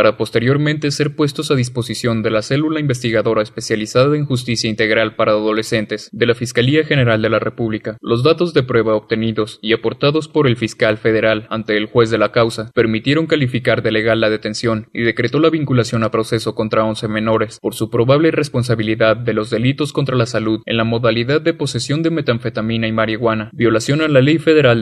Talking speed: 190 wpm